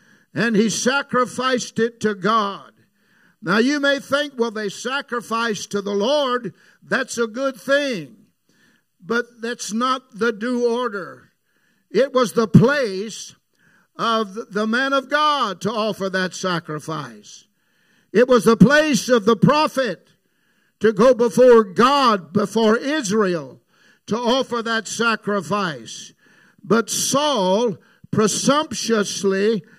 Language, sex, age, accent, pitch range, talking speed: English, male, 60-79, American, 185-240 Hz, 120 wpm